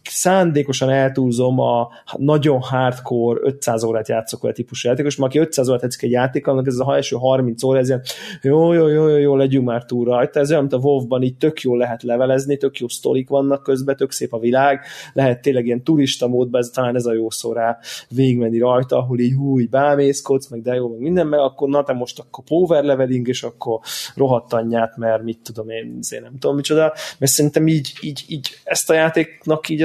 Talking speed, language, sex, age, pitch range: 205 wpm, Hungarian, male, 20-39, 120-145 Hz